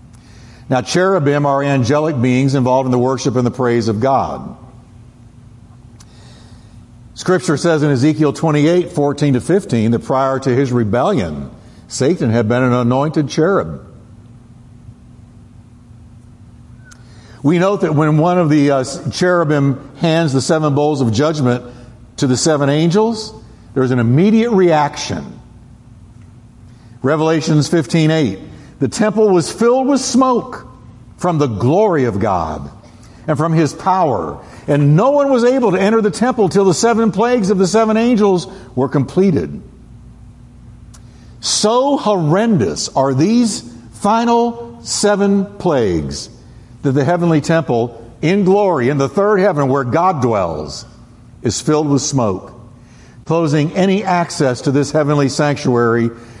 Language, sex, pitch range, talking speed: English, male, 120-175 Hz, 135 wpm